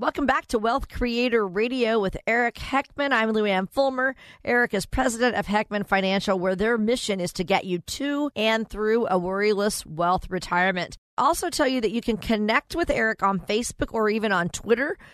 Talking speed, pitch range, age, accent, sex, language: 185 wpm, 180-235 Hz, 40-59, American, female, English